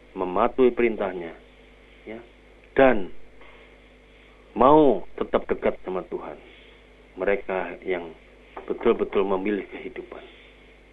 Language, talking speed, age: Indonesian, 75 wpm, 40-59